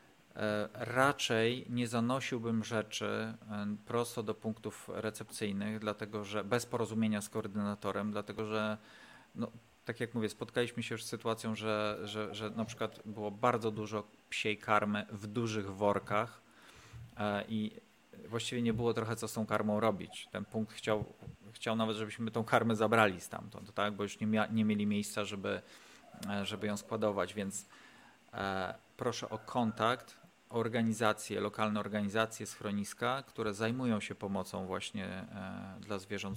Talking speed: 140 wpm